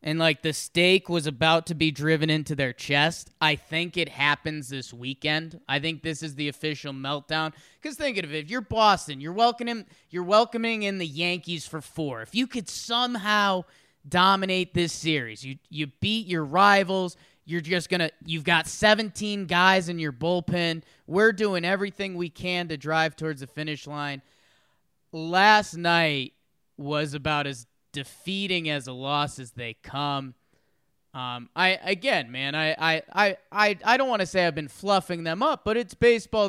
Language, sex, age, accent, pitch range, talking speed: English, male, 20-39, American, 150-190 Hz, 175 wpm